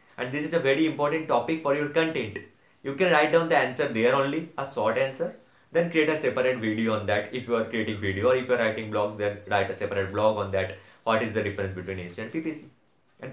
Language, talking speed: English, 250 wpm